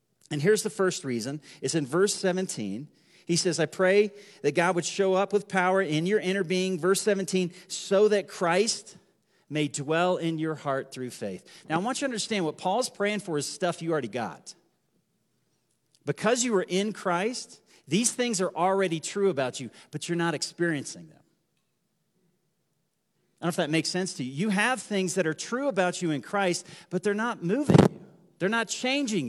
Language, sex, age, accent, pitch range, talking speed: English, male, 40-59, American, 165-205 Hz, 195 wpm